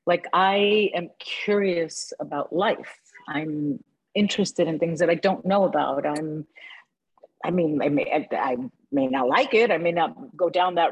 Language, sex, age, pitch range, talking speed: English, female, 50-69, 155-220 Hz, 165 wpm